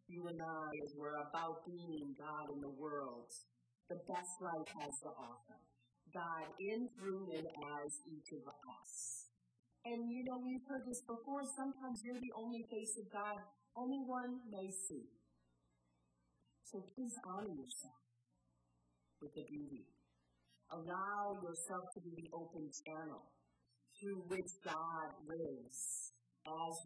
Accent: American